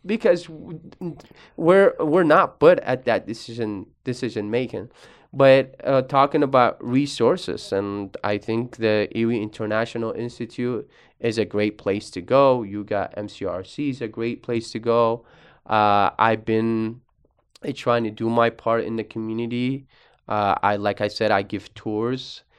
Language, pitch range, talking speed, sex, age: English, 105-130 Hz, 150 wpm, male, 20-39